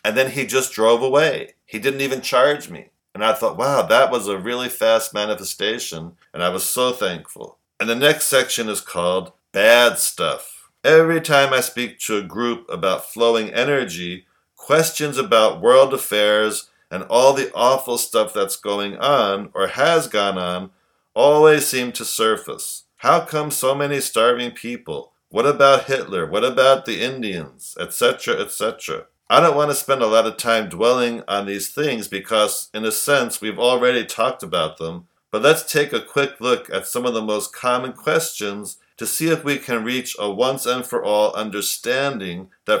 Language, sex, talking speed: English, male, 175 wpm